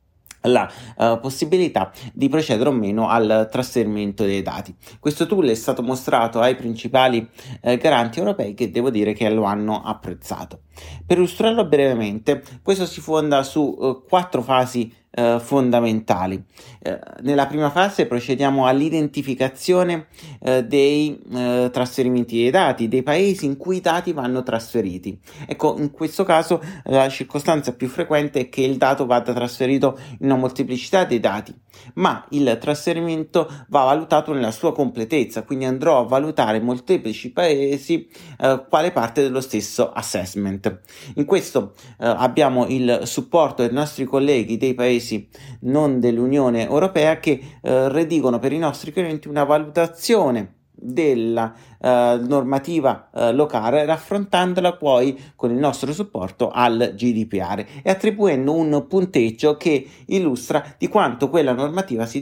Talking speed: 140 wpm